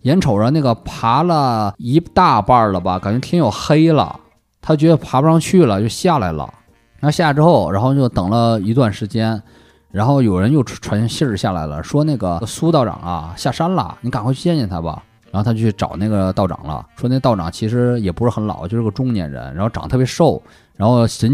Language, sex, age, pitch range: Chinese, male, 20-39, 95-140 Hz